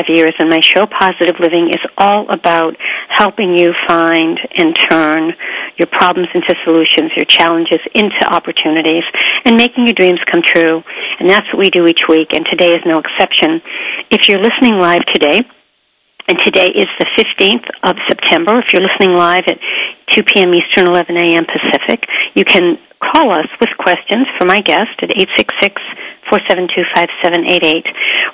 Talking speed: 155 wpm